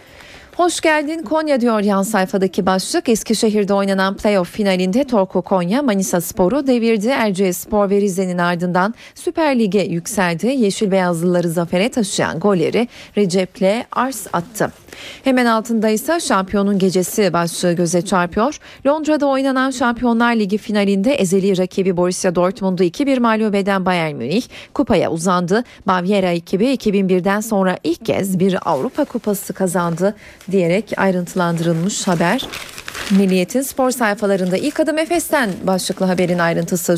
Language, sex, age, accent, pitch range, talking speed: Turkish, female, 40-59, native, 185-245 Hz, 120 wpm